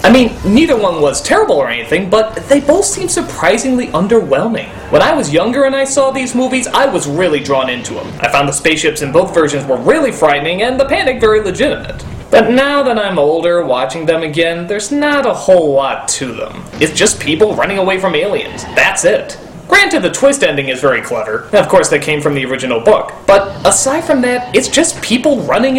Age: 20-39